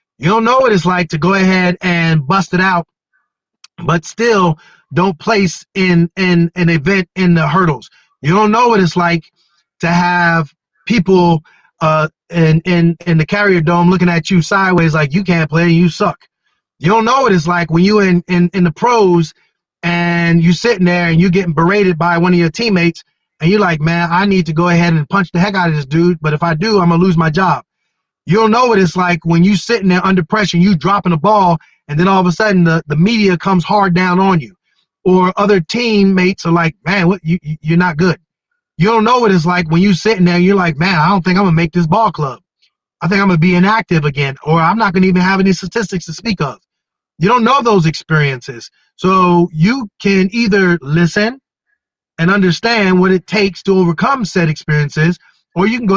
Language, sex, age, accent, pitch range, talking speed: English, male, 30-49, American, 170-195 Hz, 225 wpm